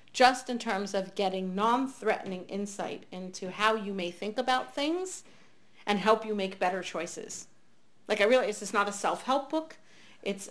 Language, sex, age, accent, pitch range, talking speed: English, female, 40-59, American, 190-235 Hz, 170 wpm